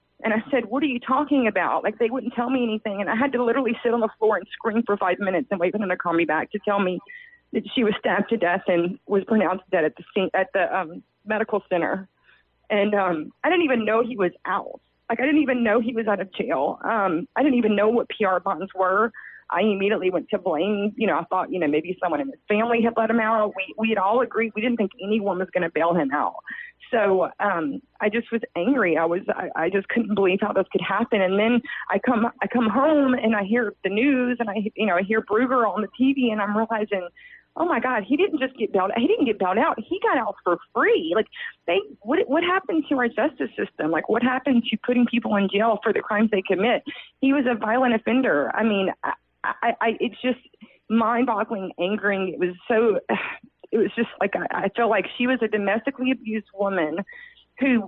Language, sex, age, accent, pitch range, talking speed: English, female, 30-49, American, 195-245 Hz, 240 wpm